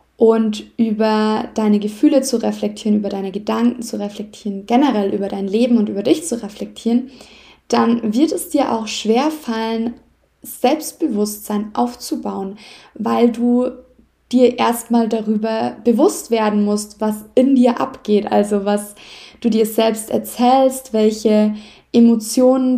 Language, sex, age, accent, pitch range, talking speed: German, female, 20-39, German, 220-255 Hz, 130 wpm